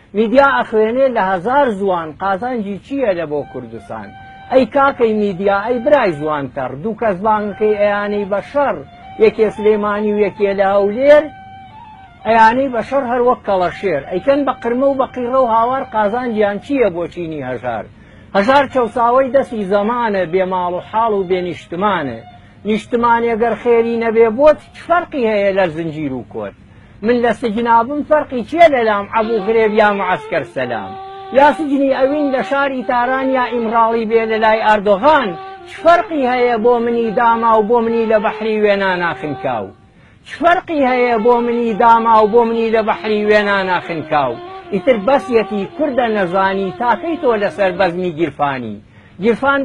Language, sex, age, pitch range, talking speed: Persian, male, 60-79, 195-255 Hz, 135 wpm